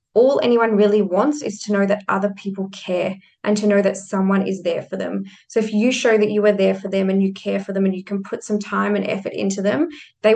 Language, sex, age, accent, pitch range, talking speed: English, female, 20-39, Australian, 195-215 Hz, 265 wpm